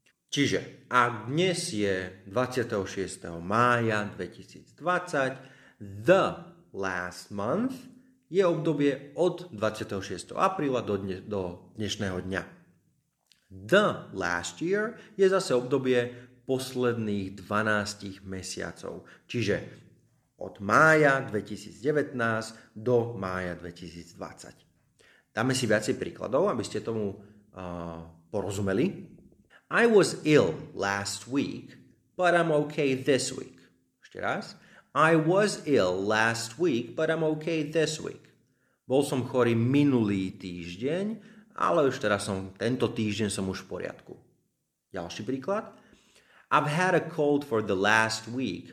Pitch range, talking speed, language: 100-140 Hz, 110 wpm, Slovak